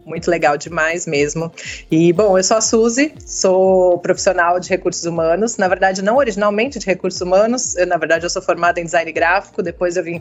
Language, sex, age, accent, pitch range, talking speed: Portuguese, female, 20-39, Brazilian, 170-205 Hz, 200 wpm